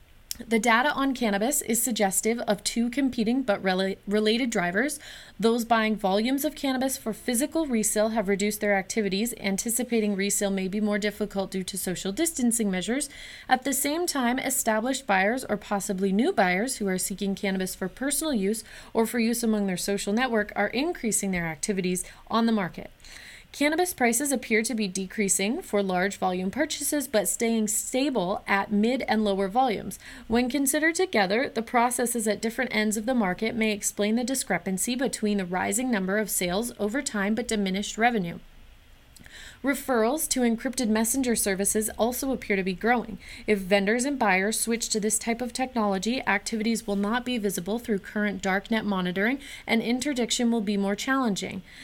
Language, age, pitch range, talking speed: English, 30-49, 200-245 Hz, 170 wpm